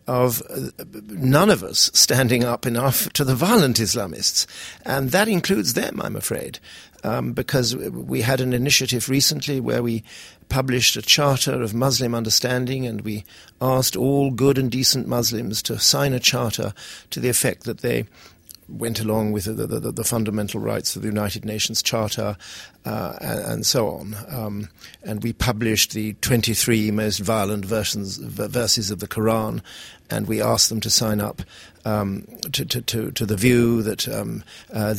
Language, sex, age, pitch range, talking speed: English, male, 60-79, 110-135 Hz, 170 wpm